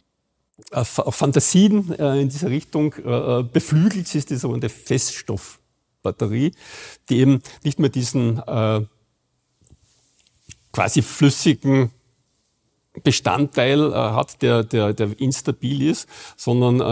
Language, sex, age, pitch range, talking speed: German, male, 50-69, 110-140 Hz, 85 wpm